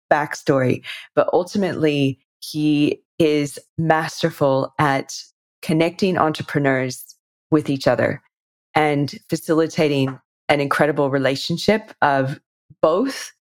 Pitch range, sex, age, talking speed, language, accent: 140-170 Hz, female, 20-39, 85 wpm, English, American